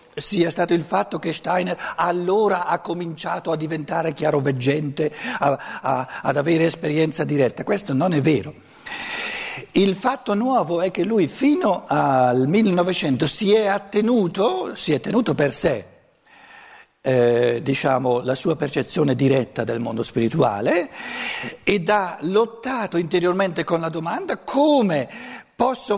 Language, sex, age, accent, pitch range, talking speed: Italian, male, 60-79, native, 140-210 Hz, 130 wpm